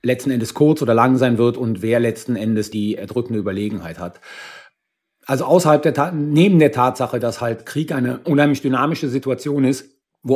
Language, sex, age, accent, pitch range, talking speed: German, male, 40-59, German, 120-150 Hz, 180 wpm